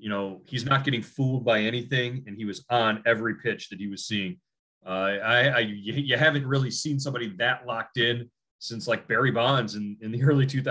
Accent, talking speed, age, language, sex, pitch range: American, 215 wpm, 30-49, English, male, 105-135 Hz